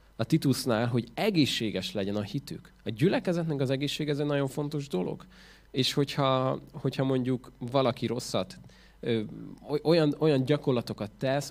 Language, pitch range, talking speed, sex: Hungarian, 115-150 Hz, 140 wpm, male